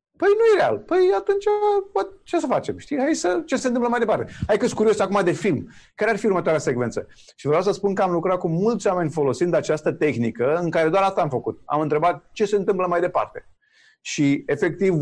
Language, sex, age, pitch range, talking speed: Romanian, male, 30-49, 140-200 Hz, 225 wpm